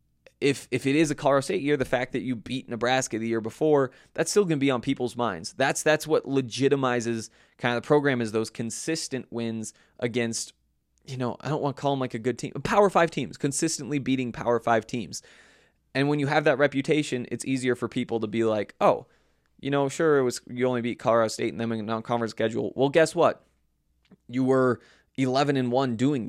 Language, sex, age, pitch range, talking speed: English, male, 20-39, 115-140 Hz, 220 wpm